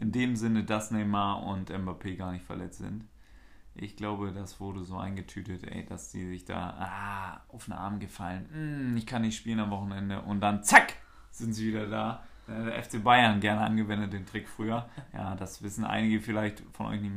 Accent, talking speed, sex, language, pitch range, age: German, 200 wpm, male, German, 100-110 Hz, 30-49